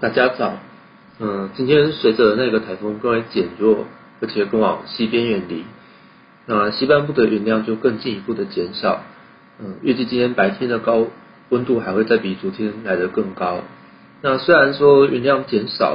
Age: 40-59